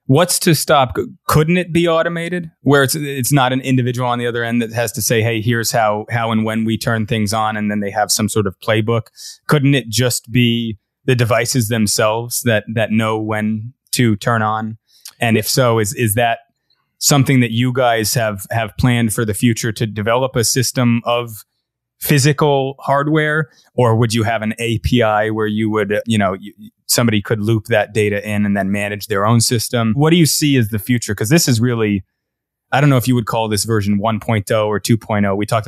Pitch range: 105-125 Hz